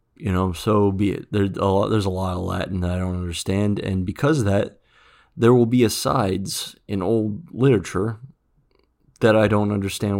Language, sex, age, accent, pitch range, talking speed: English, male, 30-49, American, 95-115 Hz, 170 wpm